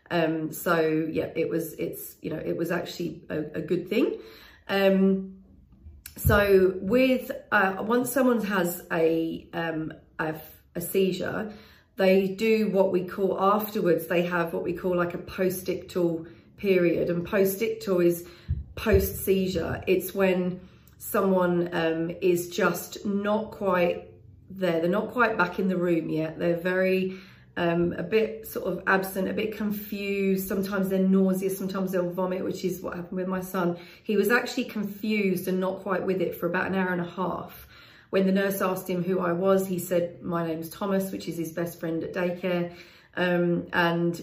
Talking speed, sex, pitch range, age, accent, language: 170 wpm, female, 175-195 Hz, 40-59, British, English